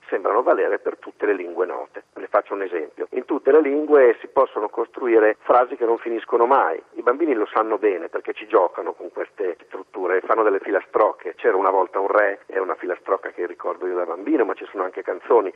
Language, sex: Italian, male